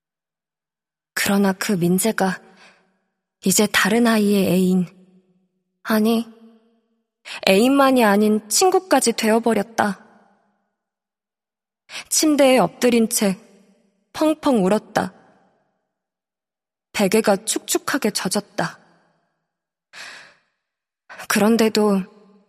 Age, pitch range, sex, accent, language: 20-39, 200-245 Hz, female, native, Korean